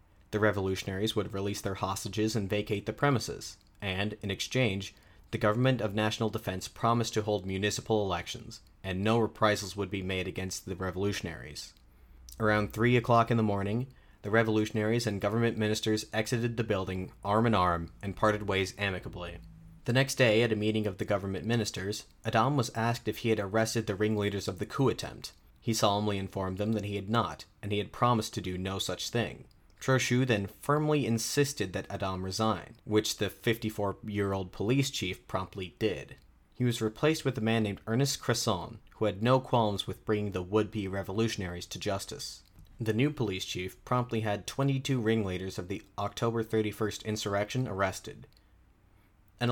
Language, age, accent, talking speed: English, 30-49, American, 170 wpm